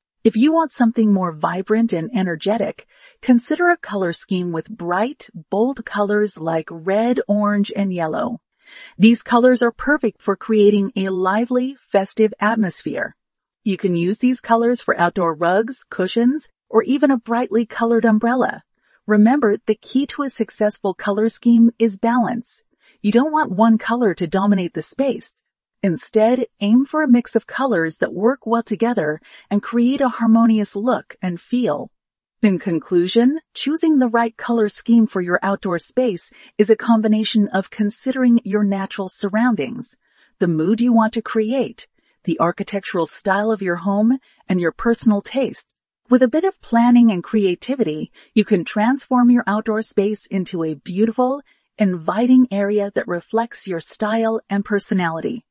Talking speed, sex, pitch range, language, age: 155 wpm, female, 195-240 Hz, English, 40-59